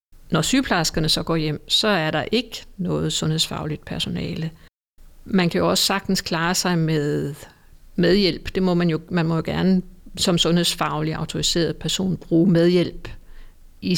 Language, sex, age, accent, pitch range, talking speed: Danish, female, 60-79, native, 155-185 Hz, 155 wpm